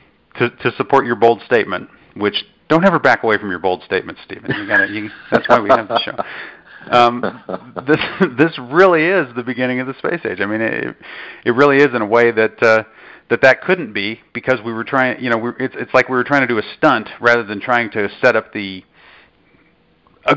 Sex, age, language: male, 40-59, English